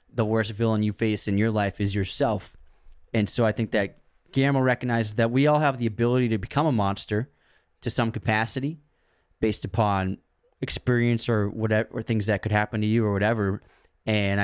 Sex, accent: male, American